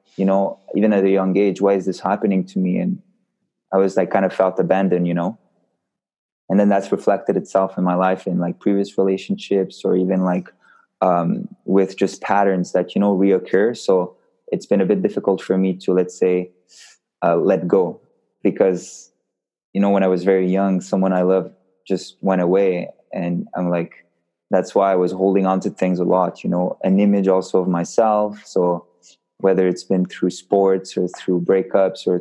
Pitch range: 90-100 Hz